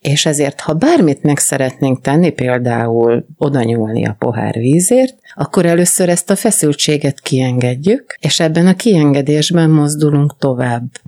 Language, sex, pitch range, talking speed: Hungarian, female, 130-160 Hz, 130 wpm